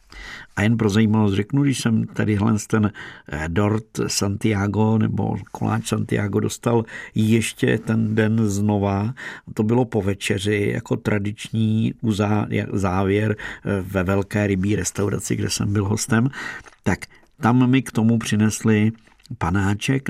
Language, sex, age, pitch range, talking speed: Czech, male, 50-69, 100-110 Hz, 125 wpm